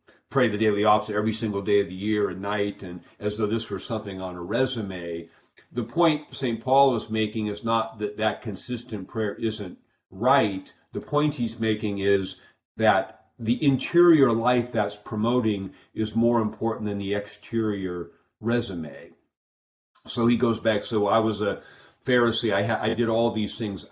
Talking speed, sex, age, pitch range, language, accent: 170 wpm, male, 50-69, 100-115 Hz, English, American